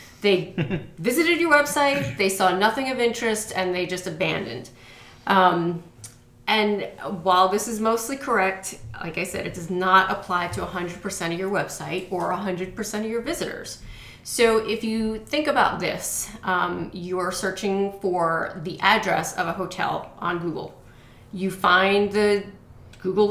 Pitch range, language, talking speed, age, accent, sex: 180-220 Hz, English, 150 wpm, 30-49, American, female